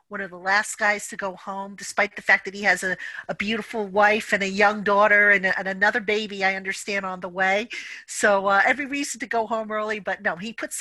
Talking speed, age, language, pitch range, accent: 240 wpm, 50-69, English, 190-225 Hz, American